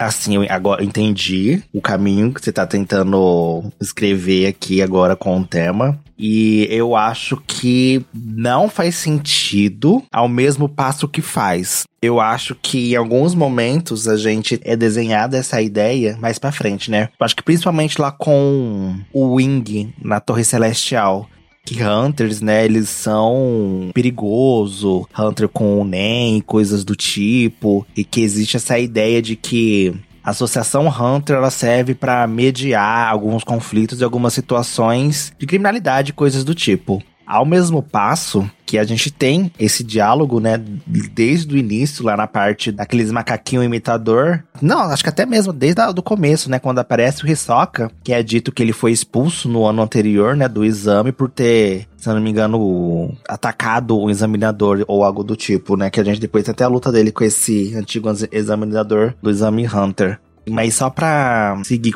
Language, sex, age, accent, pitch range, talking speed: Portuguese, male, 20-39, Brazilian, 105-130 Hz, 165 wpm